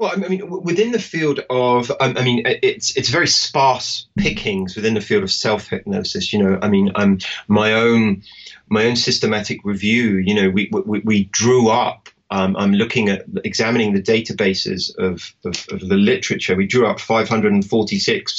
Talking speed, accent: 175 wpm, British